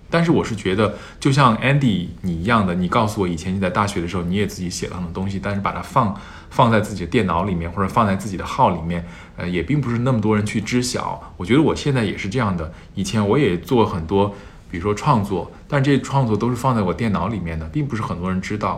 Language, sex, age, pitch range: Chinese, male, 20-39, 90-115 Hz